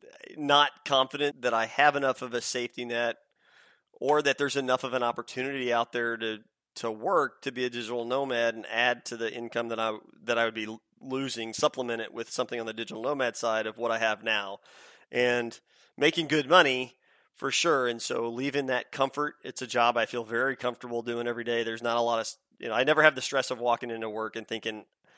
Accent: American